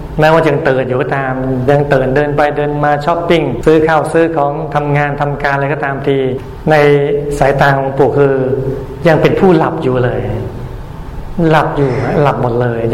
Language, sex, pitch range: Thai, male, 130-150 Hz